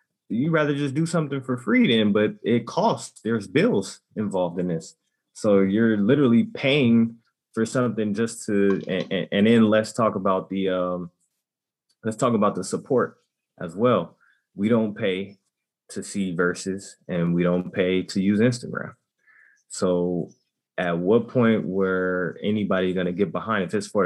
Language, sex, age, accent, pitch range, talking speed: English, male, 20-39, American, 95-115 Hz, 165 wpm